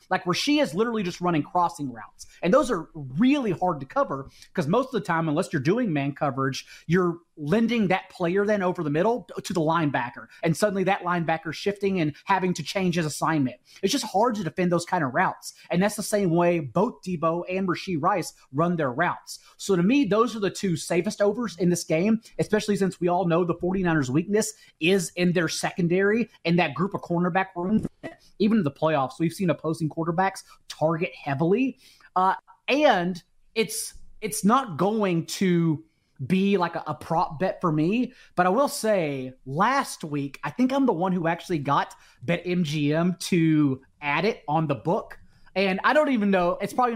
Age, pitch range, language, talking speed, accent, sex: 30-49, 160-200 Hz, English, 195 wpm, American, male